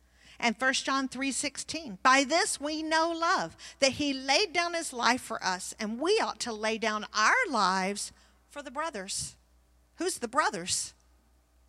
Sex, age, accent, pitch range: female, 50-69, American, 195-285 Hz